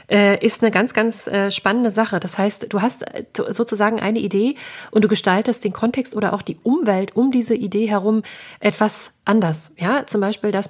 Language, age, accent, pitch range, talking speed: German, 30-49, German, 190-230 Hz, 180 wpm